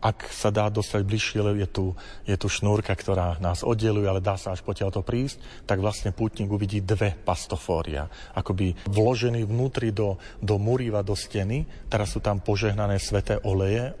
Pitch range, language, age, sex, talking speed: 95-110 Hz, Slovak, 40-59, male, 165 wpm